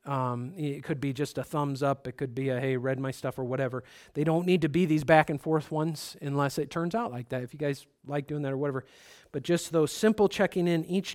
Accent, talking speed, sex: American, 265 wpm, male